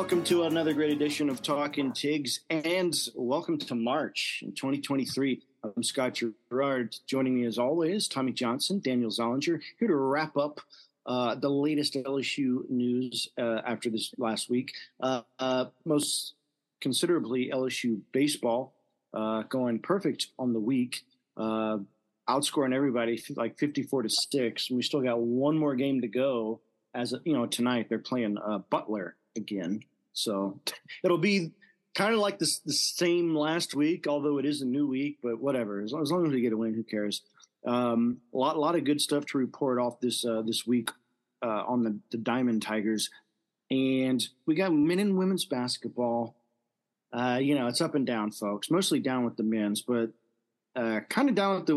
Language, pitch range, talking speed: English, 120-150 Hz, 180 wpm